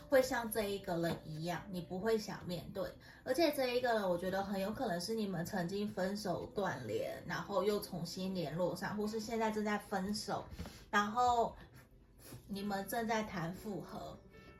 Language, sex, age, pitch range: Chinese, female, 20-39, 175-220 Hz